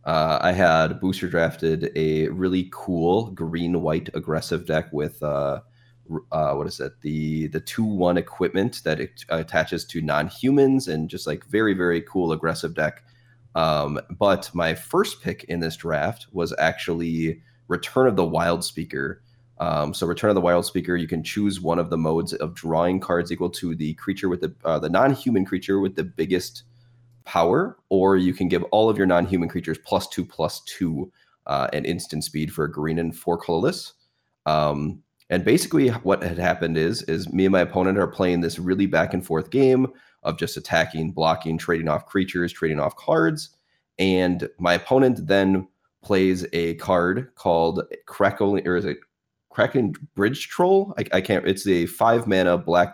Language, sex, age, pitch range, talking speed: English, male, 20-39, 80-100 Hz, 180 wpm